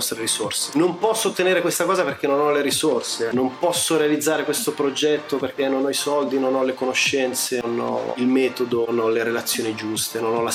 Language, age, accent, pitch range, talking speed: Italian, 30-49, native, 125-145 Hz, 210 wpm